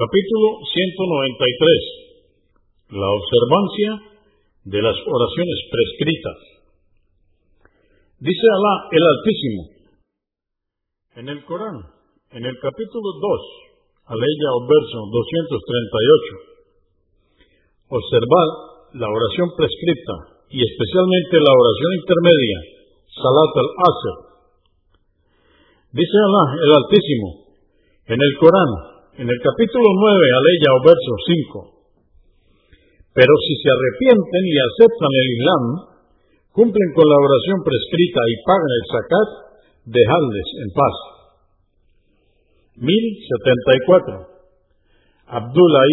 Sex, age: male, 50-69